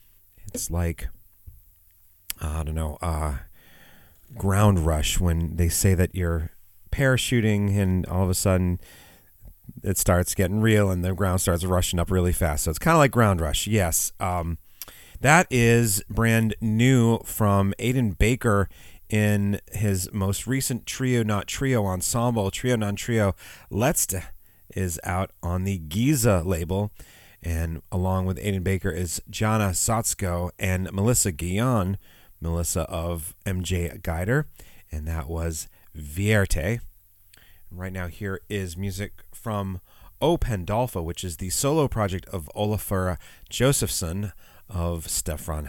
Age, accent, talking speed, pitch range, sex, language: 30-49, American, 135 wpm, 90-105 Hz, male, English